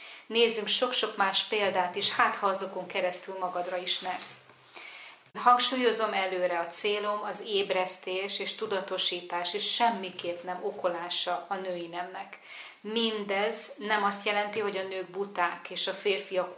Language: Hungarian